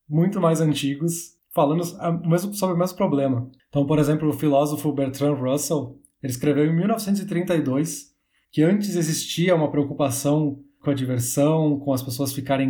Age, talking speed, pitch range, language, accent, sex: 20-39, 150 wpm, 130-160 Hz, Portuguese, Brazilian, male